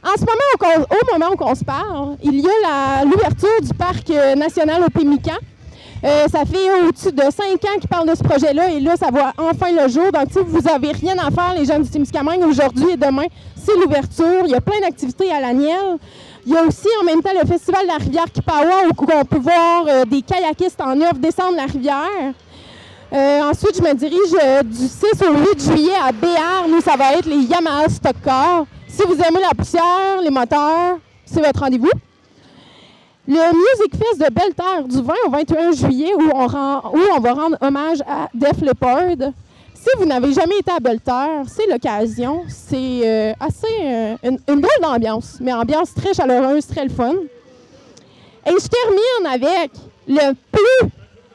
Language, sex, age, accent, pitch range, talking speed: French, female, 20-39, Canadian, 275-360 Hz, 195 wpm